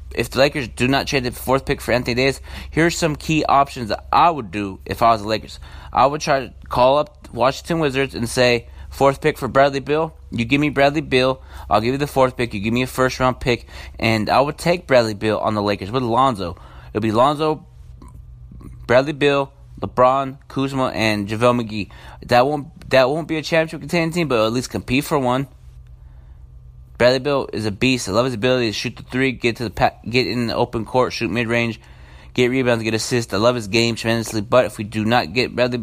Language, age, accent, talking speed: English, 20-39, American, 230 wpm